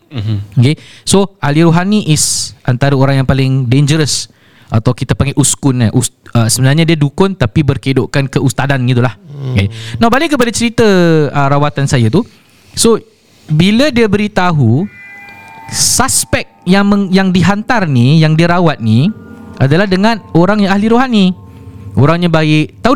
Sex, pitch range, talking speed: male, 130-195 Hz, 145 wpm